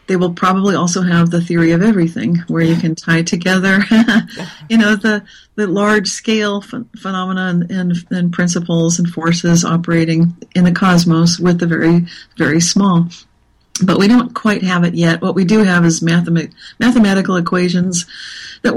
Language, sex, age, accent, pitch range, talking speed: English, female, 40-59, American, 170-195 Hz, 165 wpm